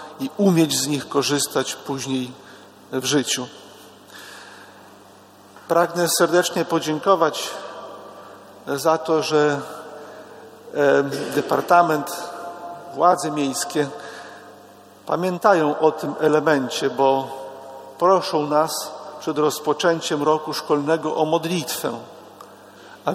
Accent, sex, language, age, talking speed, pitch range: native, male, Polish, 50-69, 80 wpm, 135-165 Hz